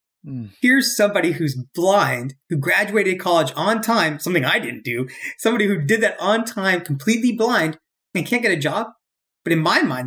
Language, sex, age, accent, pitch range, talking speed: English, male, 30-49, American, 135-185 Hz, 180 wpm